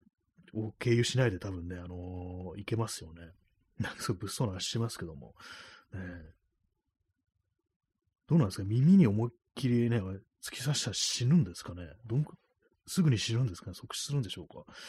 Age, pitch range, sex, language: 30-49, 90-115 Hz, male, Japanese